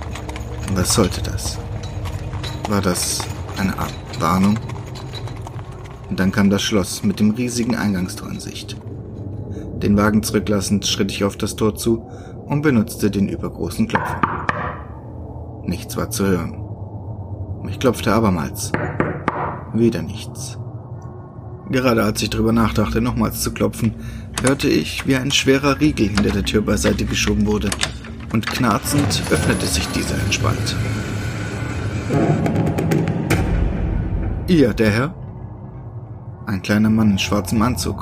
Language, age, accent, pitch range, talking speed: German, 30-49, German, 100-115 Hz, 120 wpm